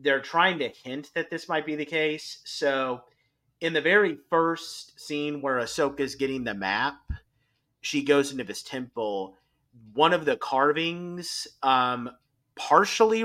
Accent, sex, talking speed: American, male, 150 wpm